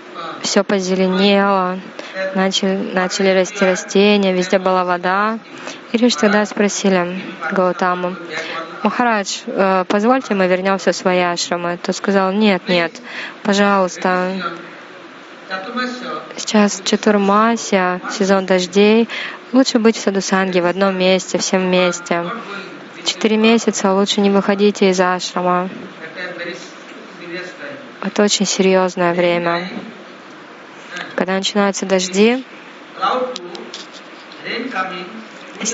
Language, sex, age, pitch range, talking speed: Russian, female, 20-39, 185-210 Hz, 90 wpm